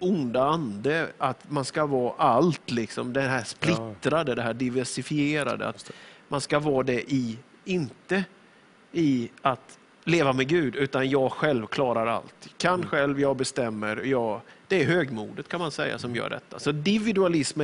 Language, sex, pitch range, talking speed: English, male, 130-175 Hz, 165 wpm